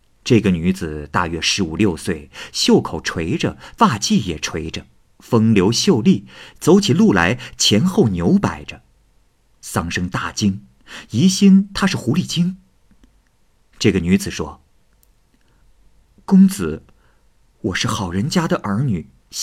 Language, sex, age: Chinese, male, 50-69